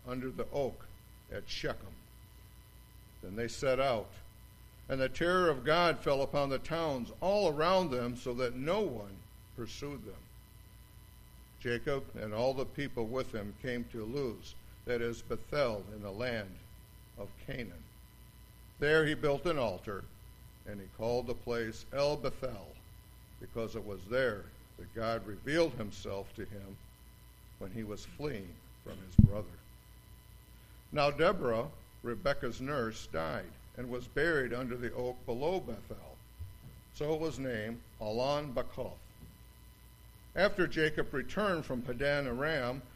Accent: American